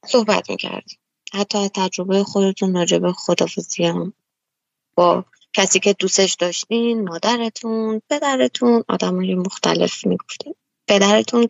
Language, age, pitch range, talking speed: Persian, 20-39, 180-215 Hz, 100 wpm